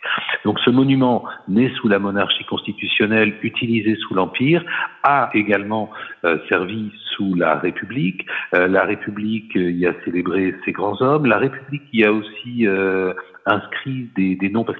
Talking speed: 160 wpm